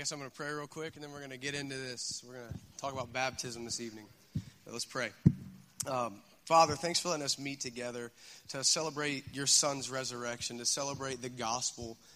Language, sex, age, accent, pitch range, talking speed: English, male, 30-49, American, 120-140 Hz, 210 wpm